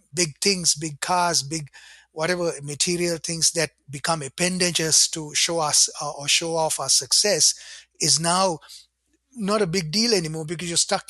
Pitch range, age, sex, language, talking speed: 155-185 Hz, 30-49, male, English, 155 wpm